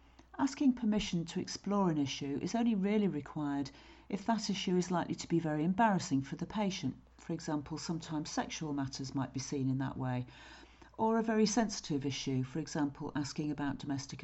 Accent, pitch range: British, 140-195 Hz